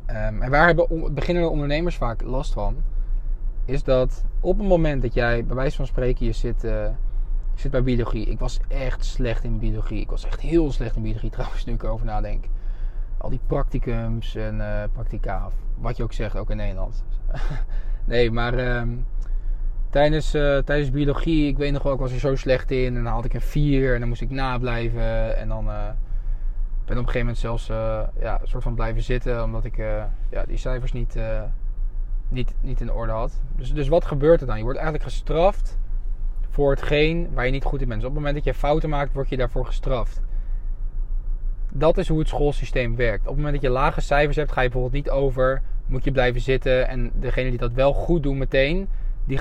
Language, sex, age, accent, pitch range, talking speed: Dutch, male, 20-39, Dutch, 110-135 Hz, 205 wpm